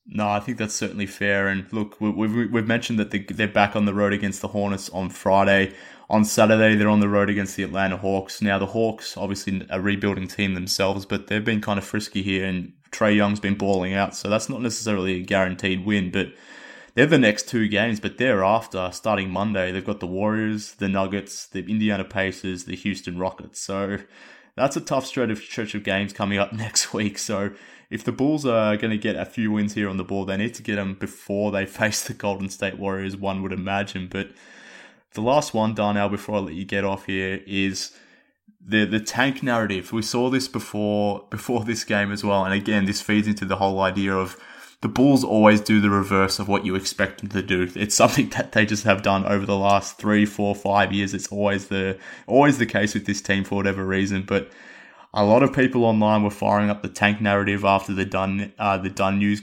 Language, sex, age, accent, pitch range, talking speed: English, male, 20-39, Australian, 95-110 Hz, 220 wpm